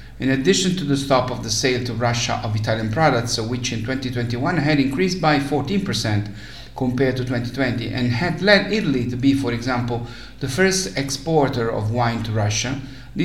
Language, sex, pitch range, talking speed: English, male, 120-145 Hz, 175 wpm